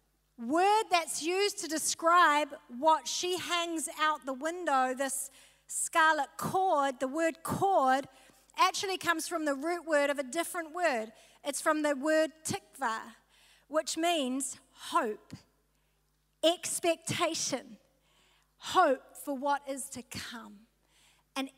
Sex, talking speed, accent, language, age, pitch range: female, 120 wpm, Australian, English, 40-59, 275-355 Hz